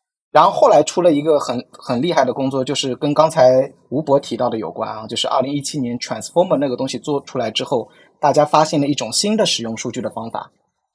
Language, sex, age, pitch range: Chinese, male, 20-39, 125-160 Hz